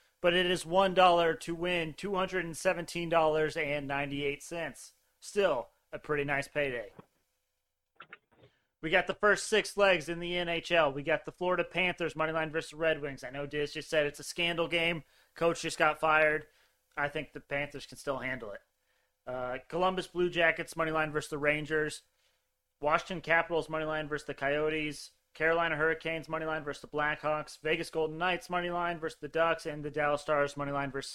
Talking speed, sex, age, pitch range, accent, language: 170 wpm, male, 30-49, 145-165 Hz, American, English